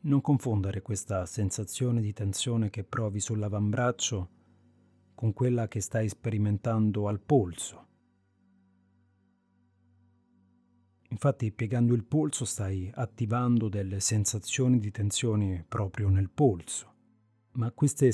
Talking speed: 105 wpm